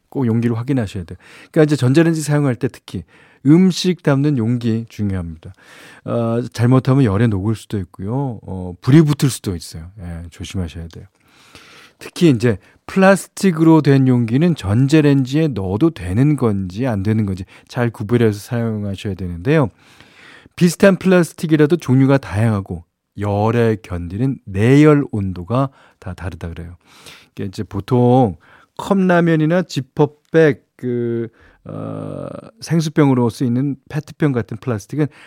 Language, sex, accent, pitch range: Korean, male, native, 100-150 Hz